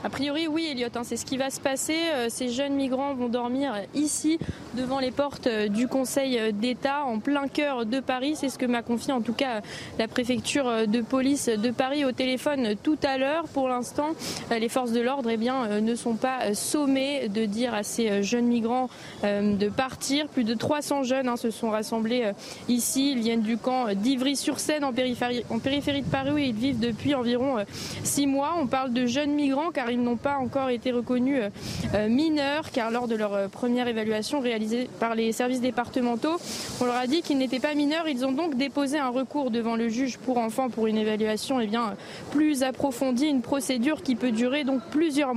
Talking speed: 195 wpm